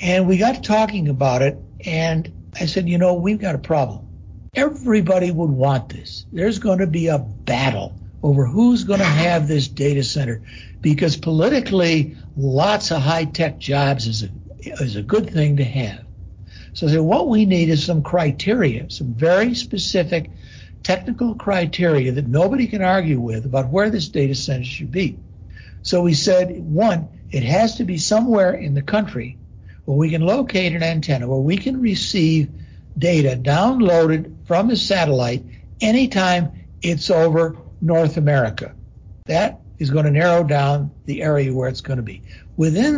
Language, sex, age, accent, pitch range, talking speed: English, male, 60-79, American, 135-185 Hz, 160 wpm